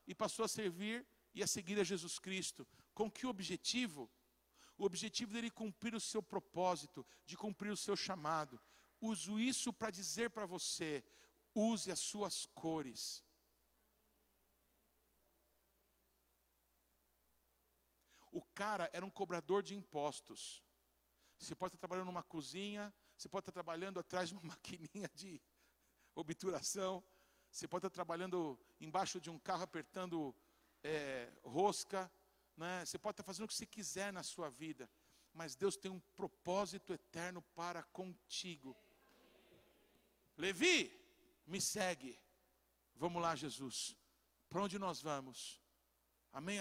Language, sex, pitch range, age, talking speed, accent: Portuguese, male, 155-200 Hz, 60-79, 130 wpm, Brazilian